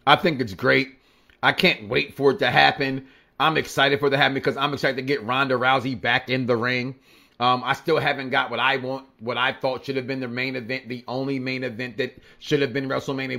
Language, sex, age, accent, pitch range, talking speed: English, male, 30-49, American, 130-180 Hz, 240 wpm